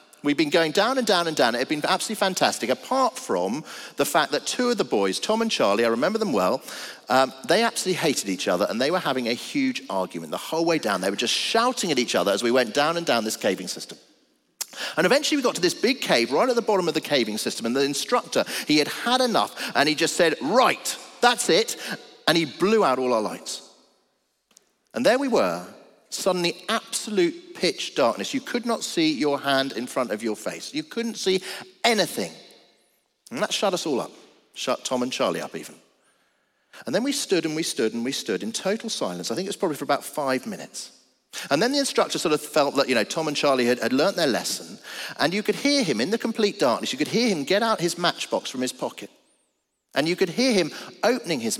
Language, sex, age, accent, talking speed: English, male, 40-59, British, 235 wpm